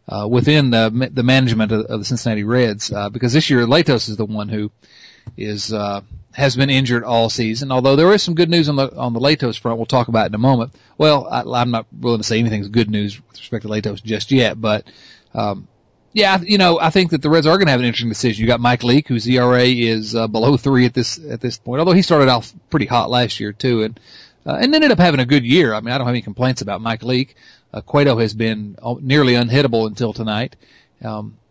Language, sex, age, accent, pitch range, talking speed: English, male, 40-59, American, 110-135 Hz, 245 wpm